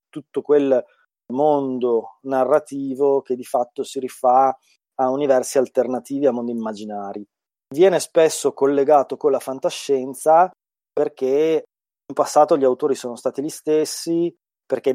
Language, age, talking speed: Italian, 20-39, 125 wpm